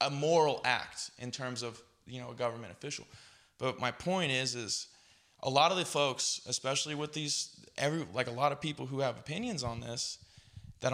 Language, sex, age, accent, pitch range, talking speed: English, male, 20-39, American, 125-160 Hz, 195 wpm